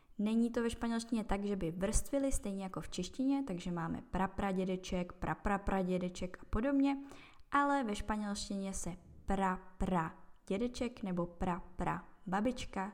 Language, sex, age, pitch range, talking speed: Czech, female, 10-29, 175-215 Hz, 115 wpm